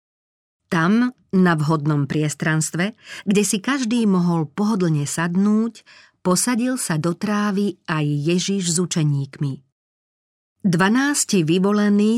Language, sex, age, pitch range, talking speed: Slovak, female, 40-59, 155-210 Hz, 100 wpm